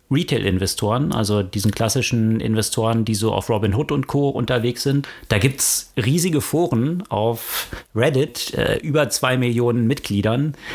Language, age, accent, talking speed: German, 40-59, German, 145 wpm